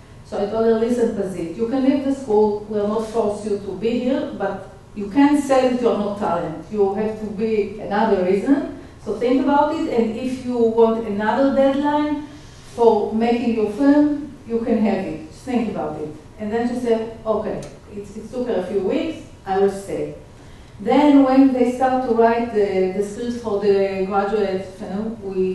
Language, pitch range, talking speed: English, 205-250 Hz, 200 wpm